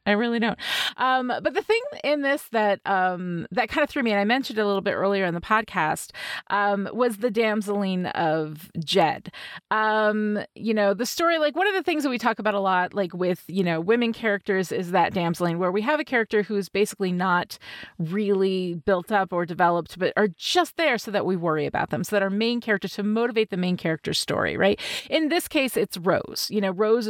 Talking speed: 225 wpm